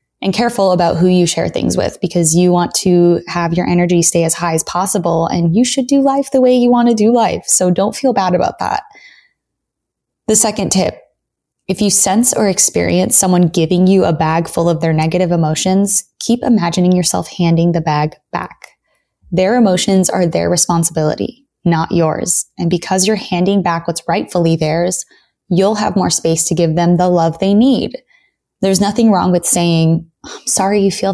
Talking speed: 190 wpm